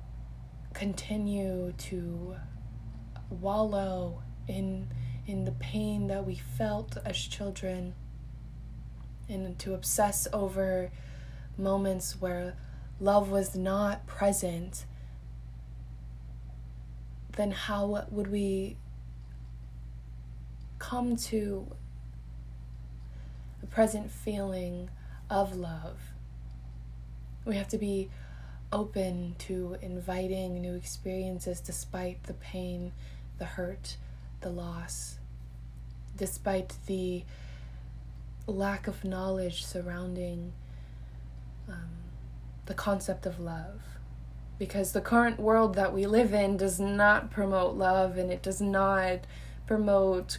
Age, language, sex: 20-39, English, female